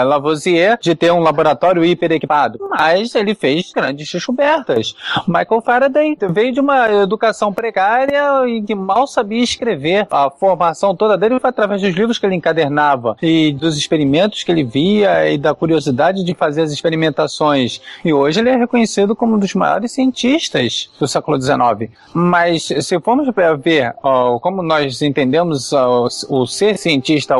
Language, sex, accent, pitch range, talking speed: Portuguese, male, Brazilian, 145-215 Hz, 155 wpm